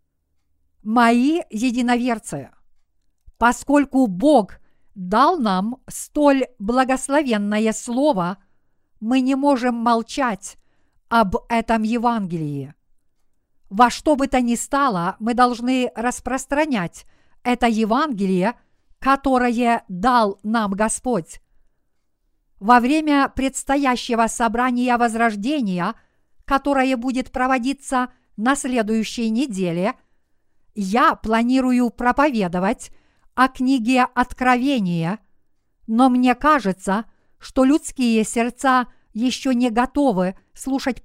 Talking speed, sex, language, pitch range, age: 85 wpm, female, Russian, 215-260 Hz, 50-69